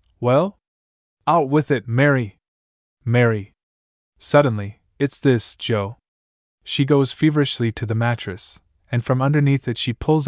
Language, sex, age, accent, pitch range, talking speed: English, male, 20-39, American, 90-135 Hz, 130 wpm